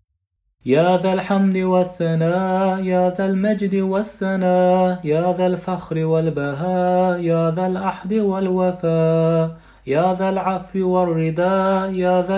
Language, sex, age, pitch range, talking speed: Turkish, male, 30-49, 150-185 Hz, 105 wpm